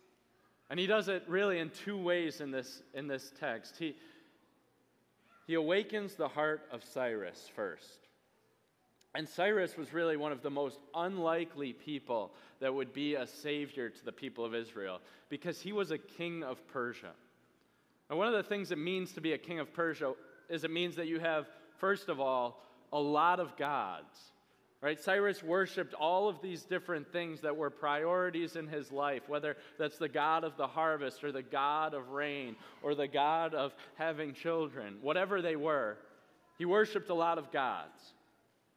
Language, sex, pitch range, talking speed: English, male, 145-180 Hz, 175 wpm